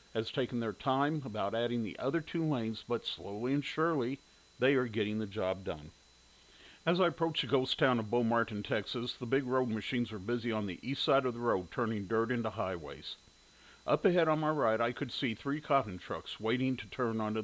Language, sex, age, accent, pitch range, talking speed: English, male, 50-69, American, 105-135 Hz, 210 wpm